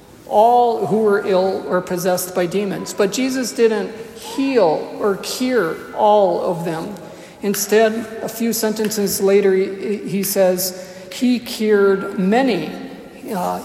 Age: 50-69